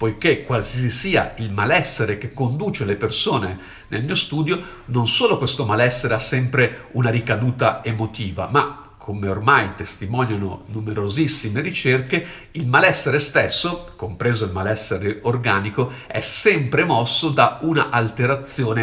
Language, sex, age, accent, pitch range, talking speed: Italian, male, 50-69, native, 110-145 Hz, 125 wpm